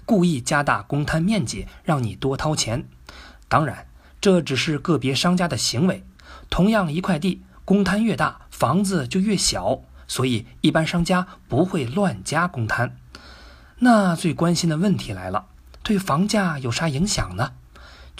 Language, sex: Chinese, male